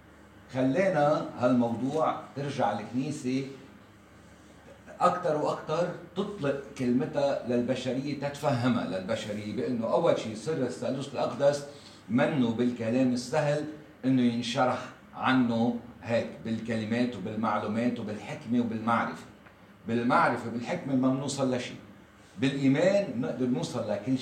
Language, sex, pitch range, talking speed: English, male, 120-140 Hz, 90 wpm